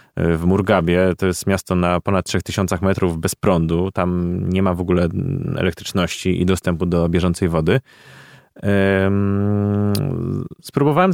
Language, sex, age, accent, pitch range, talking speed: Polish, male, 20-39, native, 90-110 Hz, 125 wpm